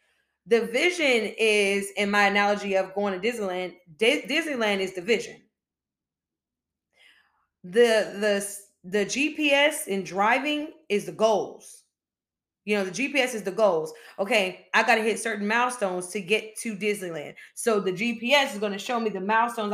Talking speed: 160 wpm